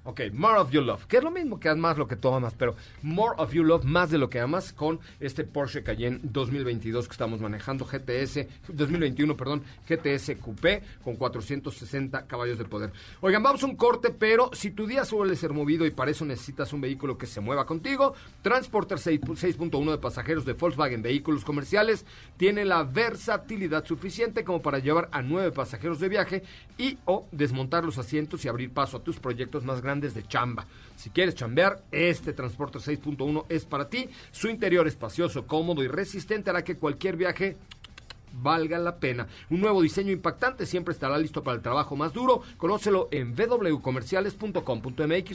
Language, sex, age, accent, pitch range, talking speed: Spanish, male, 40-59, Mexican, 130-190 Hz, 185 wpm